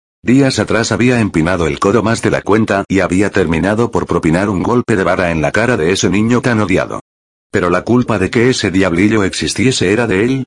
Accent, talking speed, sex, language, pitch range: Spanish, 220 wpm, male, Spanish, 90-115 Hz